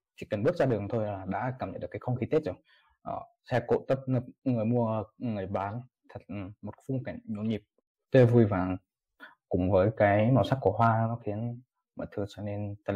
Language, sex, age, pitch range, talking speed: Vietnamese, male, 20-39, 105-130 Hz, 220 wpm